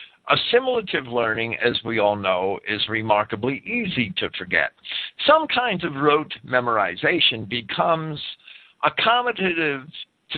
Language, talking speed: English, 110 wpm